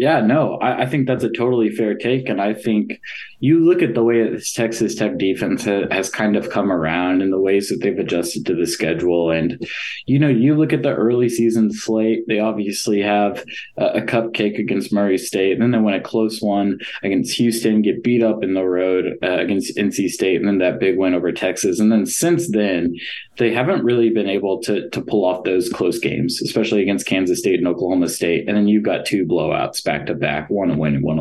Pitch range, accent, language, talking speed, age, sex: 95-120 Hz, American, English, 230 wpm, 20-39, male